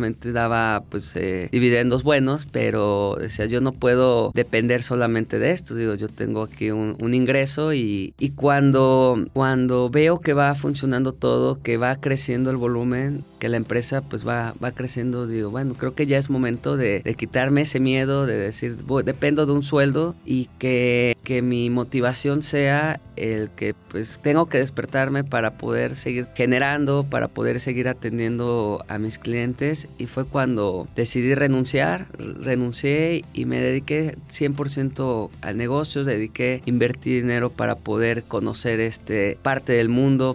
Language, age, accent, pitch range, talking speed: Spanish, 30-49, Mexican, 115-135 Hz, 160 wpm